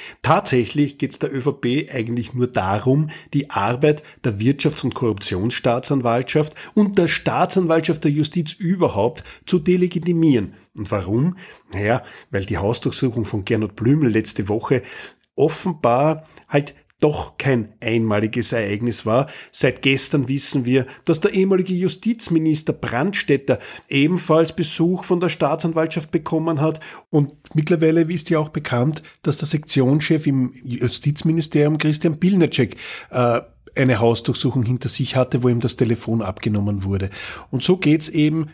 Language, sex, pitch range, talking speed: German, male, 120-160 Hz, 130 wpm